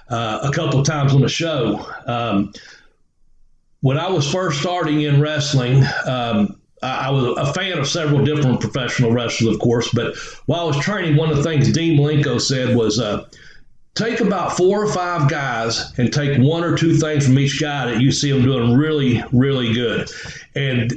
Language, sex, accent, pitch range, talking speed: English, male, American, 125-150 Hz, 190 wpm